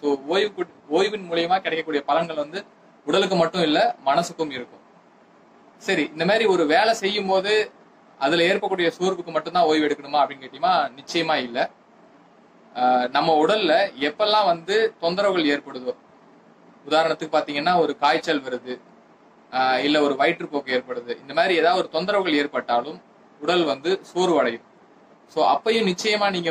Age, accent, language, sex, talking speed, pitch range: 20-39, native, Tamil, male, 130 wpm, 140-180 Hz